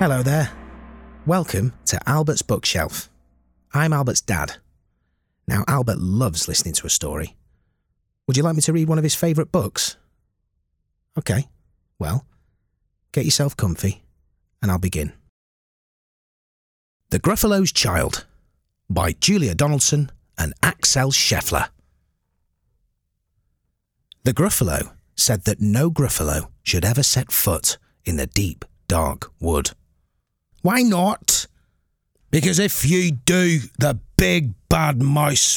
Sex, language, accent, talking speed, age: male, English, British, 115 wpm, 30-49